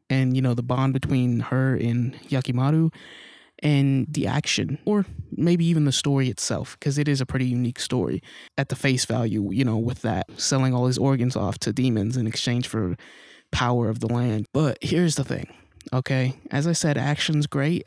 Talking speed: 190 wpm